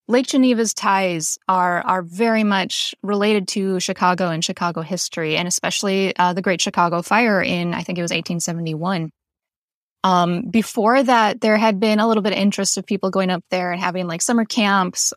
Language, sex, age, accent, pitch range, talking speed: English, female, 20-39, American, 180-220 Hz, 185 wpm